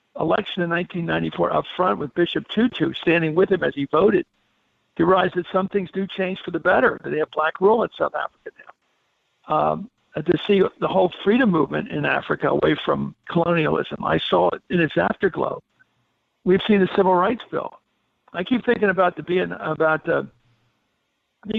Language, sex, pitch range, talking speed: English, male, 165-215 Hz, 185 wpm